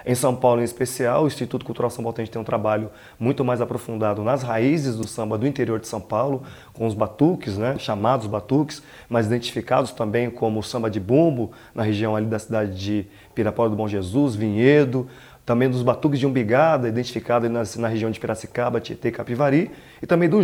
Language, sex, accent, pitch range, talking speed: Portuguese, male, Brazilian, 115-150 Hz, 190 wpm